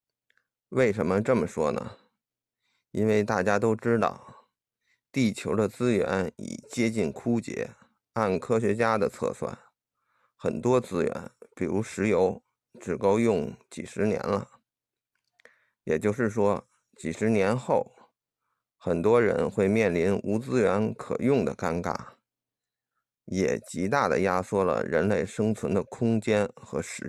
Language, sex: Chinese, male